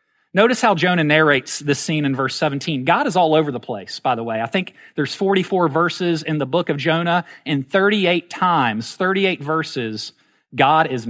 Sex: male